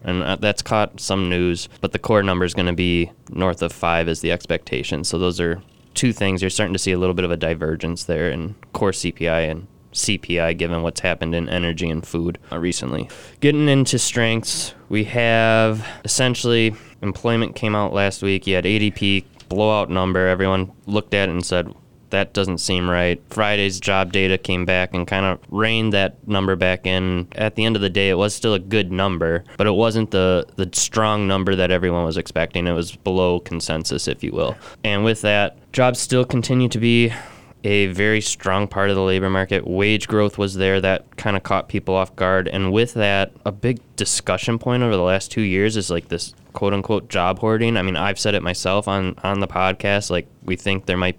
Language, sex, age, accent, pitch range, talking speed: English, male, 20-39, American, 90-110 Hz, 210 wpm